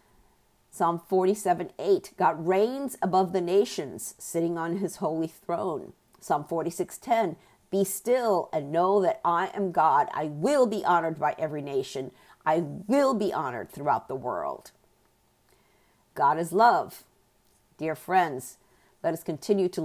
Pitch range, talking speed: 160-205 Hz, 145 wpm